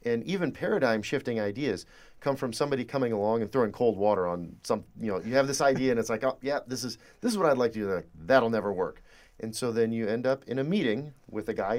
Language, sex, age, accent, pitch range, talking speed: English, male, 40-59, American, 105-135 Hz, 265 wpm